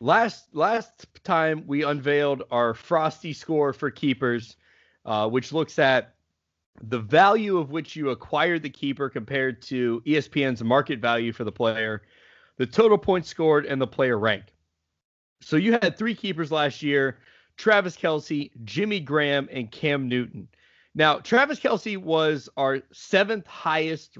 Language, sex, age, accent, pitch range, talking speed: English, male, 30-49, American, 125-170 Hz, 145 wpm